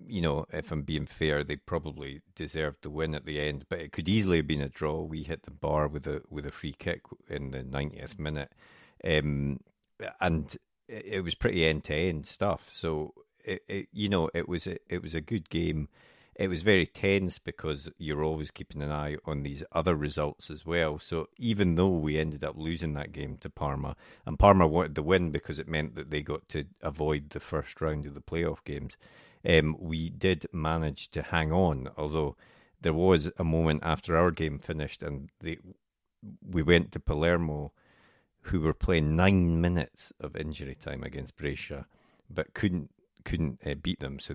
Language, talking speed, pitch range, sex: English, 190 wpm, 75-85 Hz, male